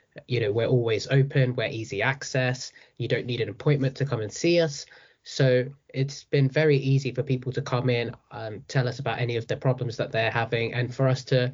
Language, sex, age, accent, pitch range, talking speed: English, male, 20-39, British, 120-135 Hz, 225 wpm